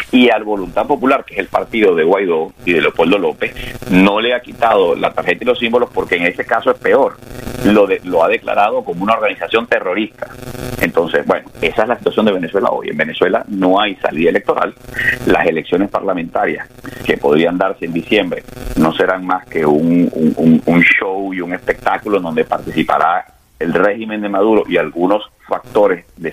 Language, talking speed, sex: Spanish, 190 wpm, male